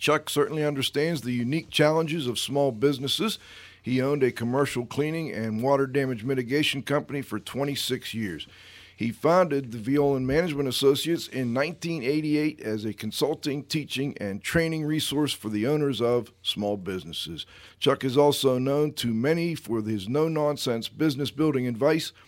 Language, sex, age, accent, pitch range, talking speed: English, male, 50-69, American, 120-155 Hz, 150 wpm